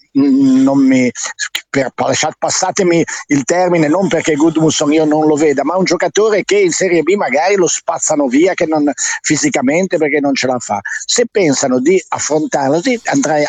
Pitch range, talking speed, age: 130-195 Hz, 175 wpm, 50-69